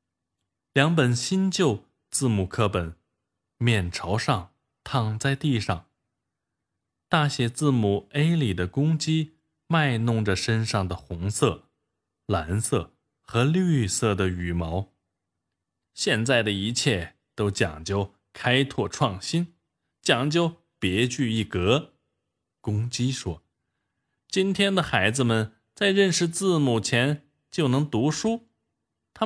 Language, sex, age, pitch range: Chinese, male, 20-39, 95-145 Hz